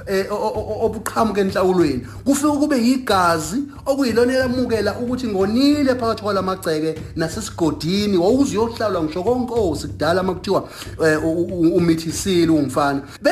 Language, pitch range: English, 170-260 Hz